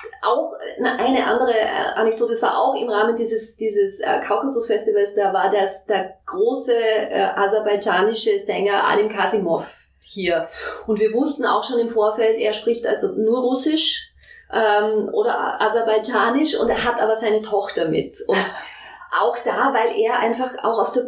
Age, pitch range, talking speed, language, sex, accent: 20-39, 210-235 Hz, 150 wpm, English, female, German